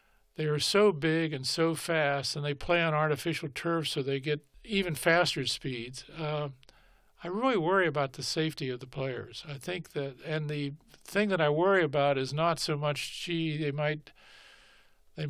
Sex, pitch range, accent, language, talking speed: male, 135-160 Hz, American, English, 180 wpm